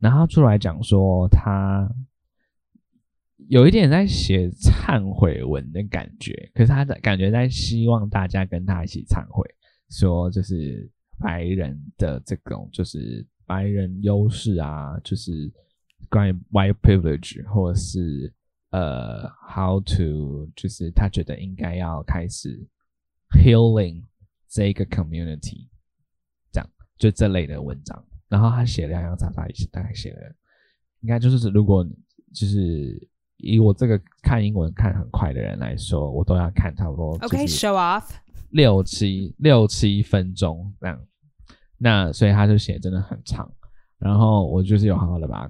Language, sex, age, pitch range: Chinese, male, 20-39, 85-110 Hz